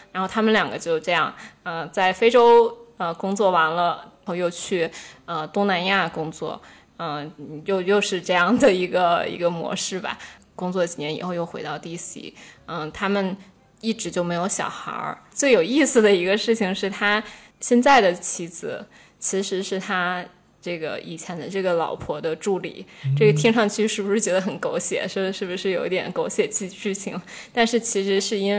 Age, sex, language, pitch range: 20-39, female, Chinese, 170-205 Hz